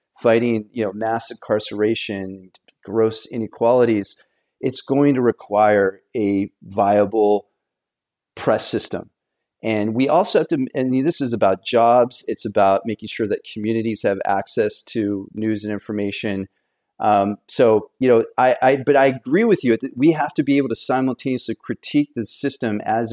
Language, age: English, 40-59